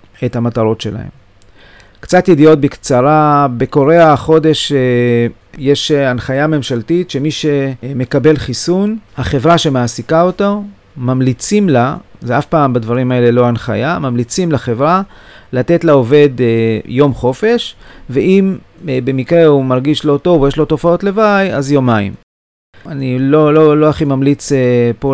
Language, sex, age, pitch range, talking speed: Hebrew, male, 40-59, 120-150 Hz, 125 wpm